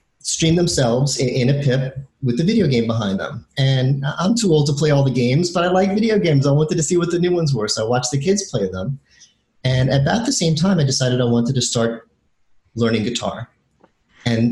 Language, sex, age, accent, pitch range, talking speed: English, male, 30-49, American, 115-150 Hz, 230 wpm